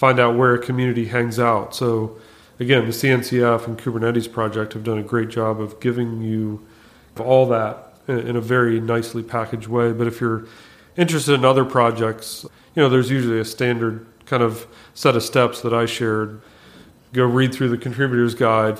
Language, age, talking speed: English, 40-59, 180 wpm